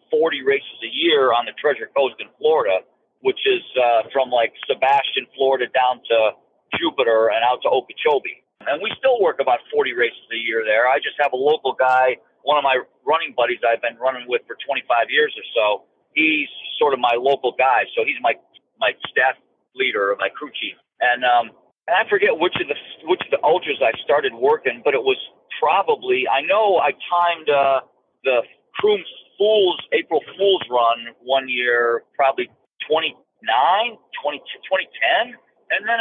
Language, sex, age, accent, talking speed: English, male, 50-69, American, 175 wpm